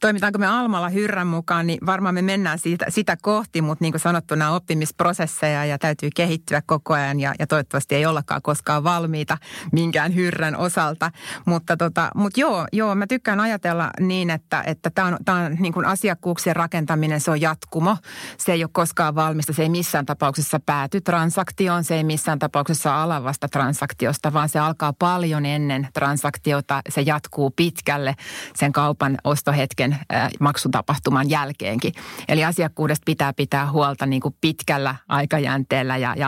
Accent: native